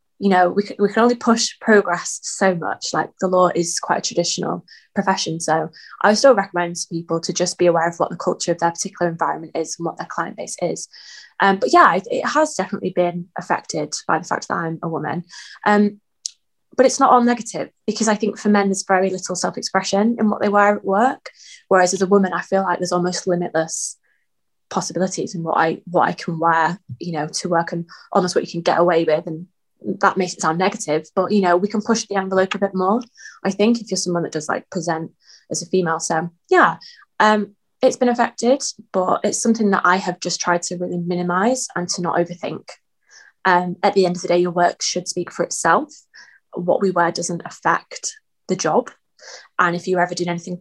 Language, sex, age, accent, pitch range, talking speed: English, female, 20-39, British, 175-205 Hz, 220 wpm